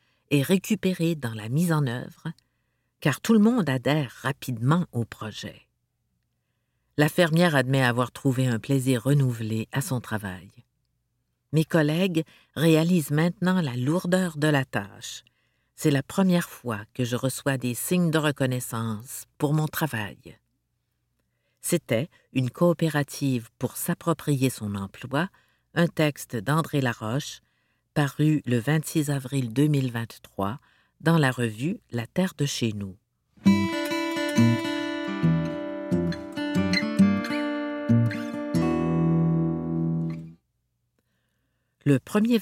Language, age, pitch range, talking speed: French, 50-69, 115-160 Hz, 110 wpm